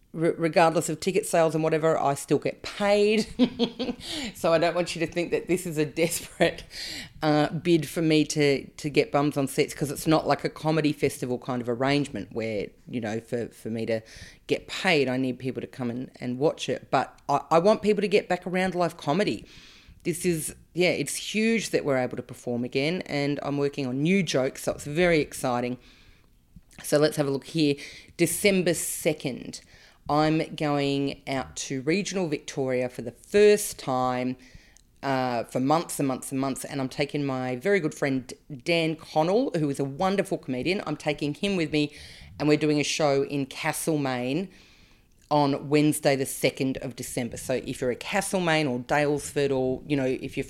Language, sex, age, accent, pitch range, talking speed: English, female, 30-49, Australian, 130-165 Hz, 190 wpm